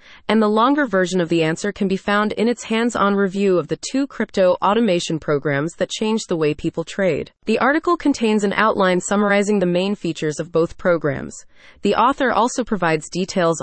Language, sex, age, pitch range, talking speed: English, female, 30-49, 170-230 Hz, 190 wpm